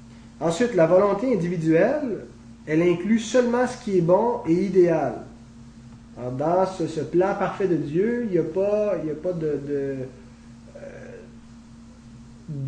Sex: male